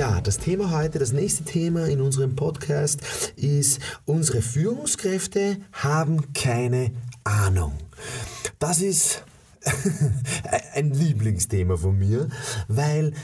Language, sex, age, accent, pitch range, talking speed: German, male, 30-49, German, 120-160 Hz, 105 wpm